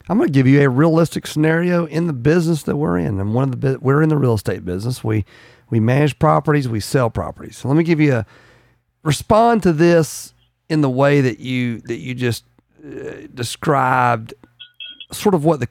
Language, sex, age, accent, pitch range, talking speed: English, male, 40-59, American, 110-150 Hz, 205 wpm